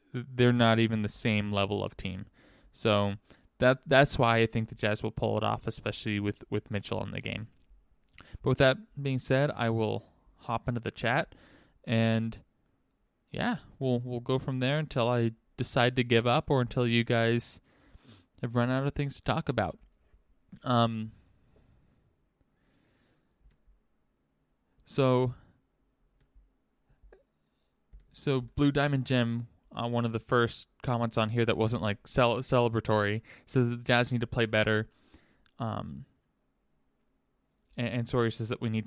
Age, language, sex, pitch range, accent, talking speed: 20-39, English, male, 105-125 Hz, American, 150 wpm